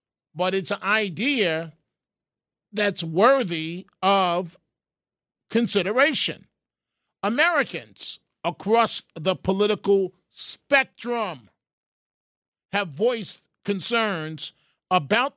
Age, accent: 50-69, American